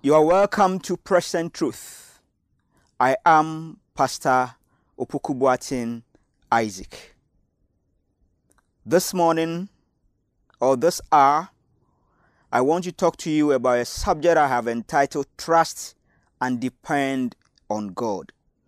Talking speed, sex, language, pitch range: 105 wpm, male, English, 120-160 Hz